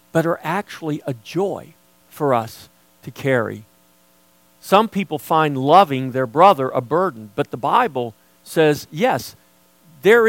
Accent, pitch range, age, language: American, 125-185 Hz, 50-69, English